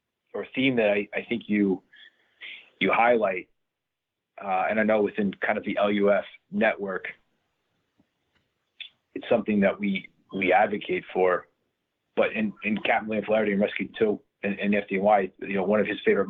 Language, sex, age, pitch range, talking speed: English, male, 30-49, 100-120 Hz, 160 wpm